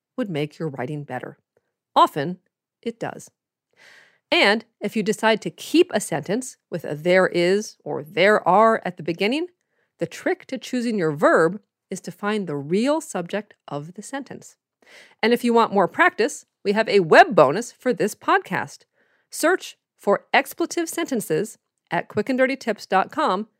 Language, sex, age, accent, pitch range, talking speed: English, female, 40-59, American, 180-260 Hz, 155 wpm